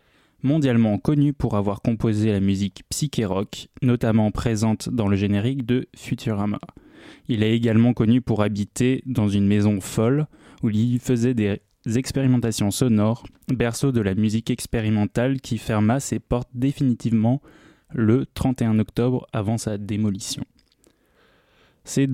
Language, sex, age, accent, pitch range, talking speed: French, male, 20-39, French, 110-125 Hz, 130 wpm